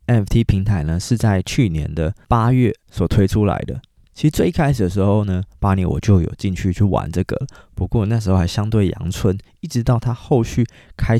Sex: male